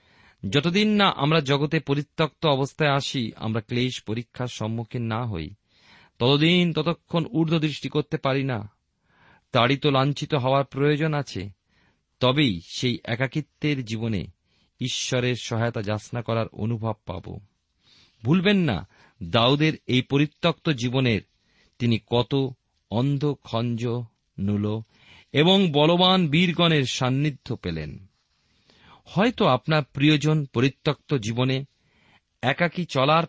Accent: native